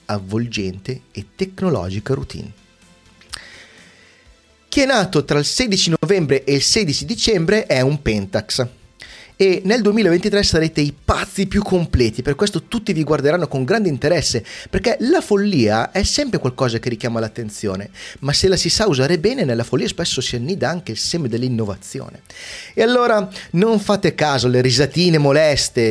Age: 30-49